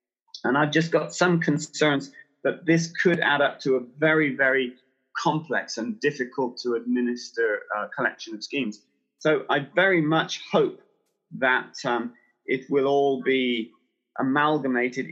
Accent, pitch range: British, 125-170 Hz